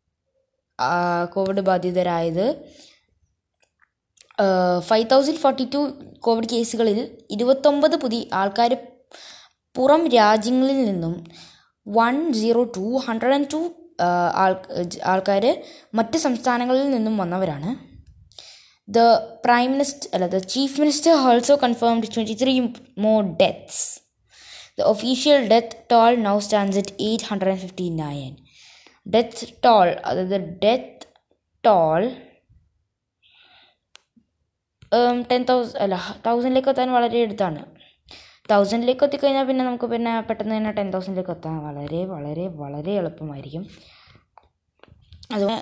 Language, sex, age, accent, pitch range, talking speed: Malayalam, female, 20-39, native, 190-255 Hz, 95 wpm